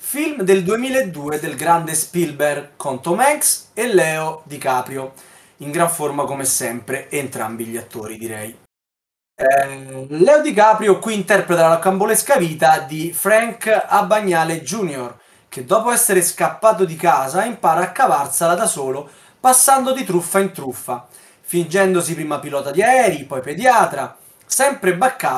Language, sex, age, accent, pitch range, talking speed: Italian, male, 20-39, native, 145-220 Hz, 135 wpm